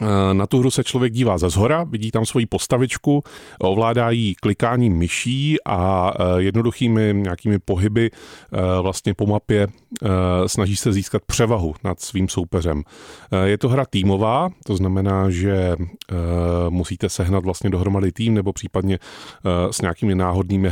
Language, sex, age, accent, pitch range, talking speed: Czech, male, 30-49, native, 90-110 Hz, 135 wpm